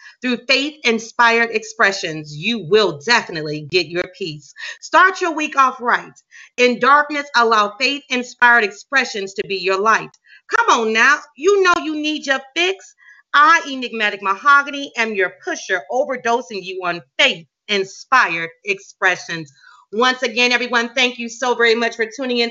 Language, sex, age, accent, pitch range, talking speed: English, female, 40-59, American, 205-265 Hz, 150 wpm